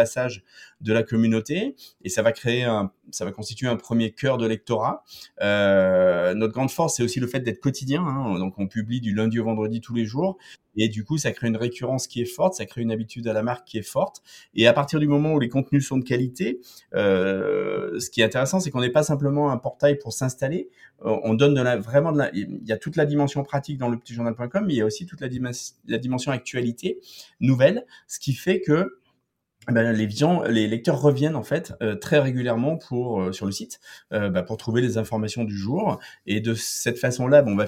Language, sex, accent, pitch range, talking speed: French, male, French, 110-140 Hz, 235 wpm